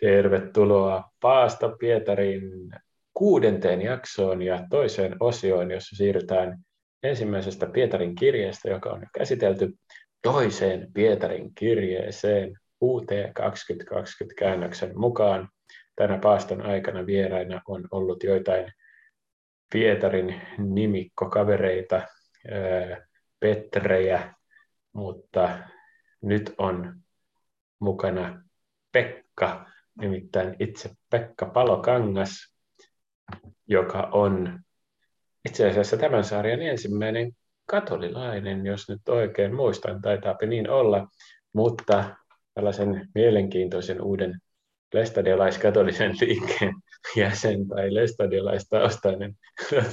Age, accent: 30-49, native